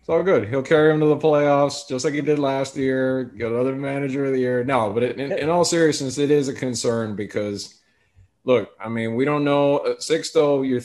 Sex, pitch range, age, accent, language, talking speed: male, 110-135 Hz, 30-49, American, English, 230 wpm